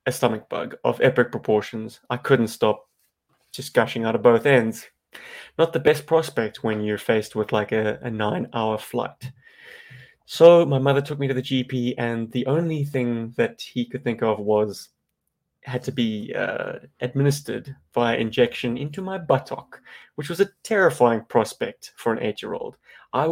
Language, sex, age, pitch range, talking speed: English, male, 20-39, 115-140 Hz, 170 wpm